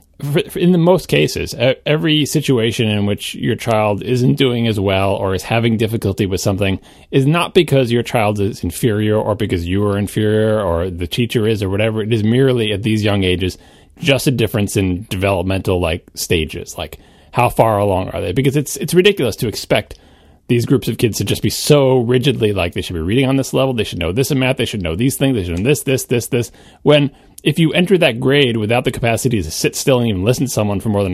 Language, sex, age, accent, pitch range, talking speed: English, male, 30-49, American, 95-130 Hz, 230 wpm